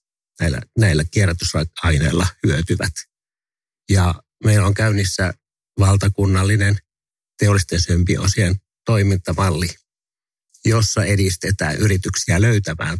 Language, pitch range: English, 85-105 Hz